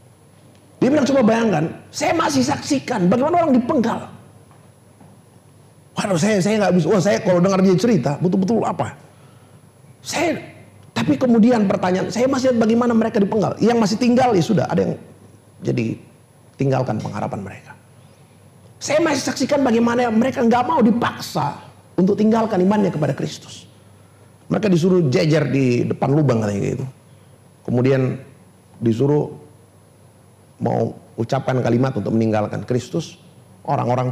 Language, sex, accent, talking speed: Indonesian, male, native, 130 wpm